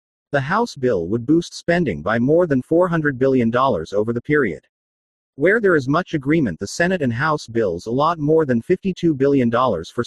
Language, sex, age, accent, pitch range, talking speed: English, male, 40-59, American, 120-165 Hz, 180 wpm